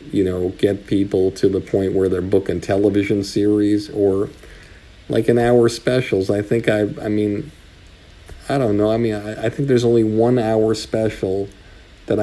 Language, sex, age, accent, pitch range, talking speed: English, male, 50-69, American, 90-110 Hz, 175 wpm